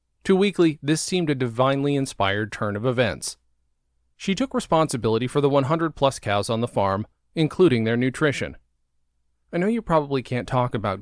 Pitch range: 110-155 Hz